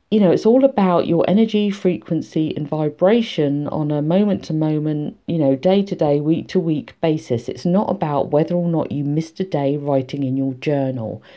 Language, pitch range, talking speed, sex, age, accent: English, 140-190 Hz, 200 wpm, female, 50-69, British